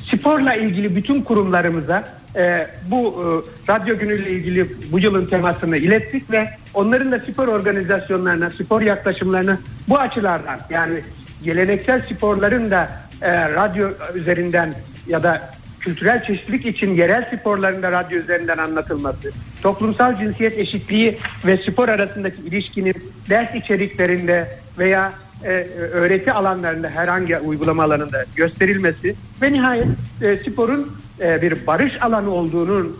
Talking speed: 115 wpm